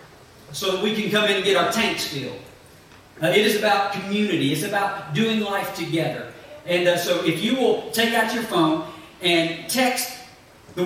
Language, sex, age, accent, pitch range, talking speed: English, male, 40-59, American, 155-200 Hz, 190 wpm